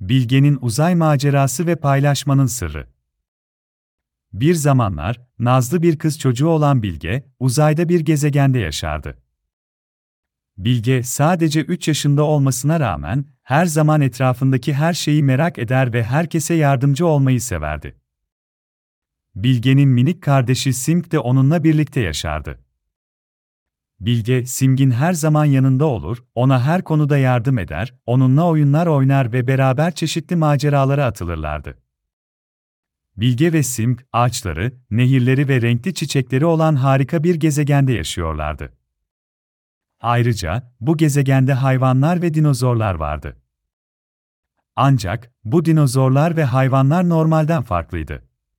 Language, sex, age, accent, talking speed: Turkish, male, 40-59, native, 110 wpm